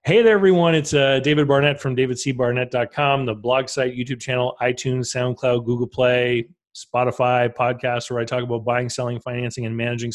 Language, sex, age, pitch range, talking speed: English, male, 30-49, 115-140 Hz, 170 wpm